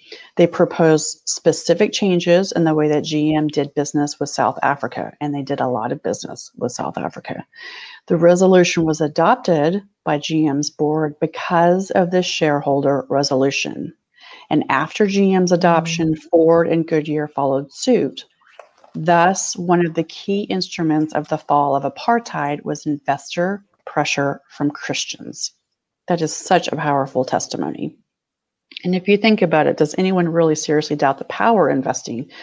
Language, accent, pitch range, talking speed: English, American, 150-175 Hz, 150 wpm